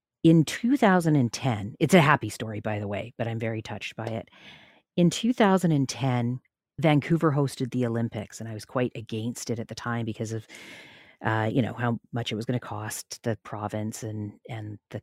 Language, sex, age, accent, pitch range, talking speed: English, female, 40-59, American, 115-145 Hz, 190 wpm